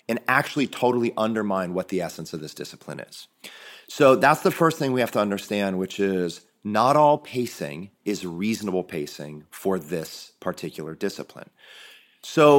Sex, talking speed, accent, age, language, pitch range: male, 155 wpm, American, 30-49, English, 105-145 Hz